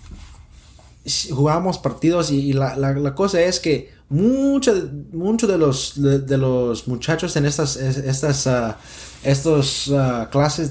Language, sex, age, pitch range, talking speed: English, male, 20-39, 110-145 Hz, 135 wpm